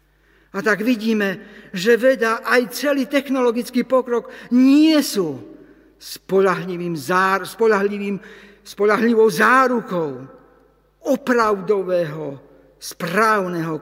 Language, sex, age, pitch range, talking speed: Slovak, male, 60-79, 155-235 Hz, 70 wpm